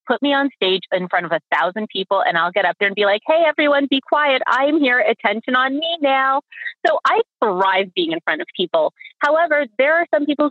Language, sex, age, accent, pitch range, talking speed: English, female, 30-49, American, 170-275 Hz, 235 wpm